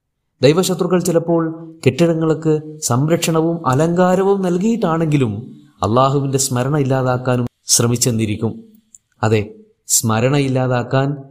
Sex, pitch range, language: male, 110-150 Hz, Malayalam